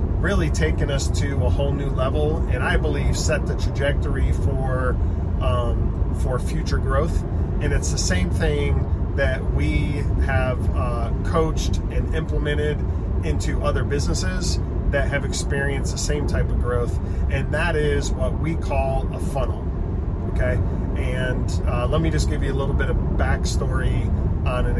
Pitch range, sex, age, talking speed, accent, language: 75-90 Hz, male, 40-59, 155 wpm, American, English